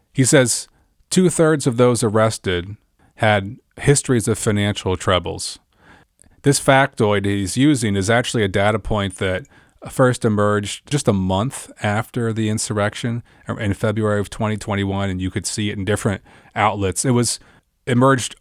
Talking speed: 145 wpm